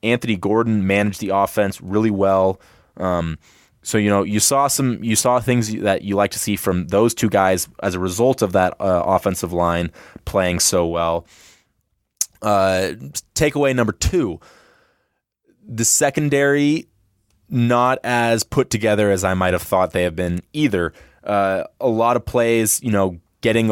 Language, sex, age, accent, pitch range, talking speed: English, male, 20-39, American, 95-115 Hz, 160 wpm